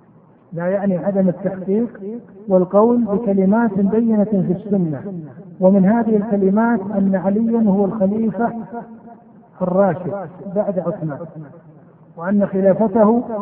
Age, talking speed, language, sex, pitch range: 50-69, 95 wpm, Arabic, male, 180-215 Hz